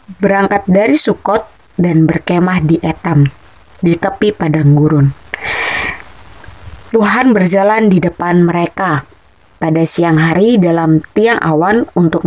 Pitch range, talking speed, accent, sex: 165-205 Hz, 110 wpm, native, female